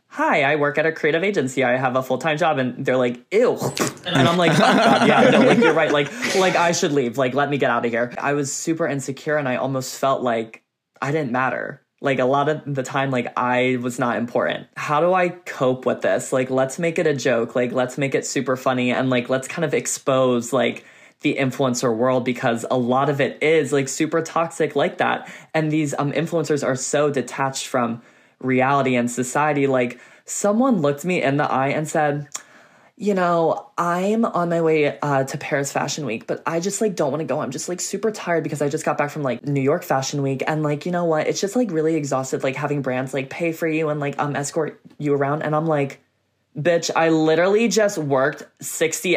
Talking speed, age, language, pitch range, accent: 230 wpm, 20-39, English, 130-160 Hz, American